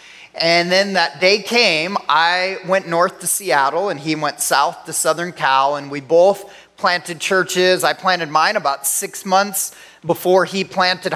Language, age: English, 30-49